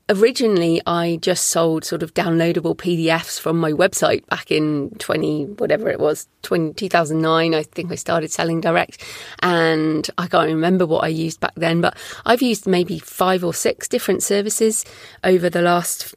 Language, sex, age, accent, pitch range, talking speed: English, female, 30-49, British, 165-195 Hz, 170 wpm